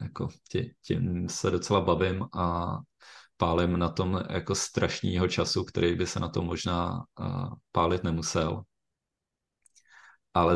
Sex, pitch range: male, 85-95 Hz